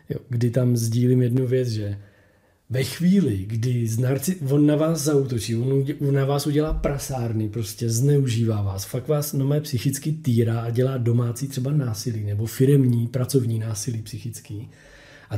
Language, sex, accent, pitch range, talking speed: Czech, male, native, 115-155 Hz, 155 wpm